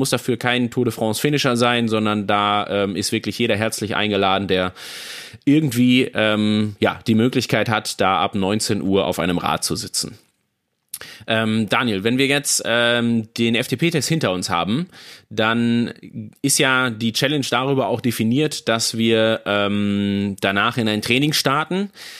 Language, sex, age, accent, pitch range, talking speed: German, male, 30-49, German, 105-135 Hz, 155 wpm